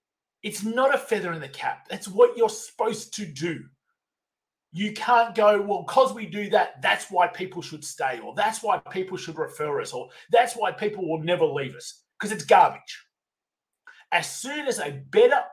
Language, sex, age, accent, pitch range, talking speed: English, male, 30-49, Australian, 170-245 Hz, 190 wpm